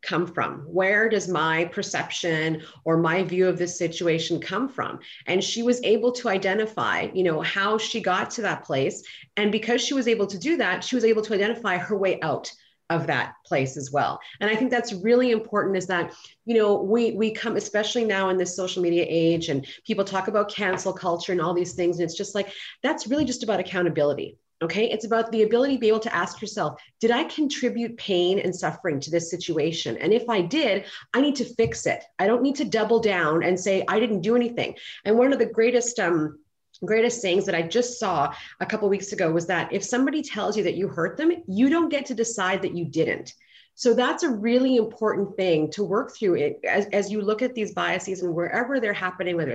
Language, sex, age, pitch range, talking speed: English, female, 30-49, 180-235 Hz, 225 wpm